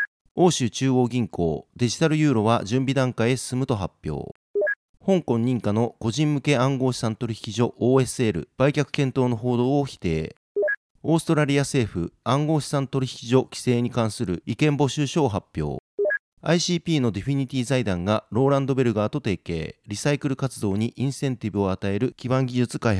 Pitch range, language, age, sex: 110-140 Hz, Japanese, 40-59, male